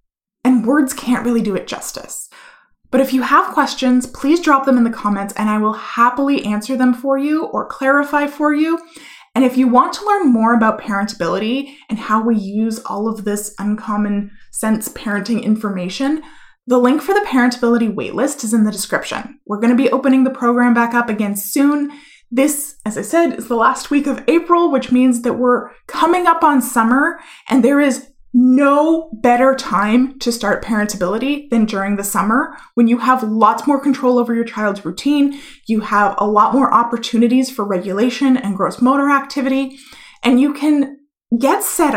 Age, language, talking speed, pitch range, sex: 20-39, English, 185 wpm, 220-280 Hz, female